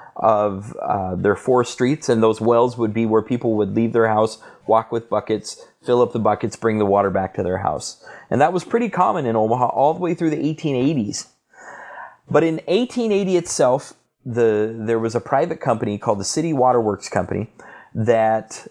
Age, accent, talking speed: 30-49, American, 190 wpm